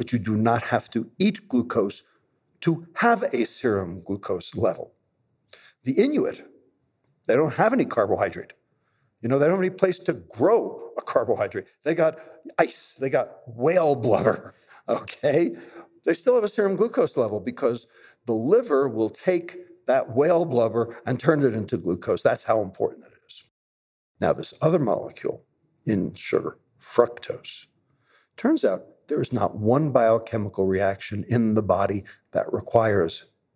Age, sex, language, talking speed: 60-79, male, English, 150 wpm